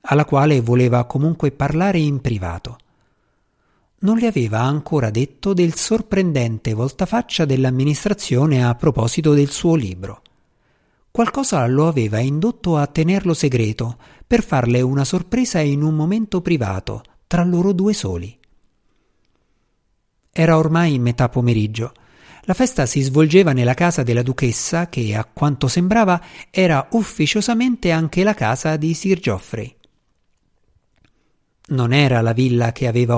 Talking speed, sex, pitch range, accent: 125 wpm, male, 120-175 Hz, native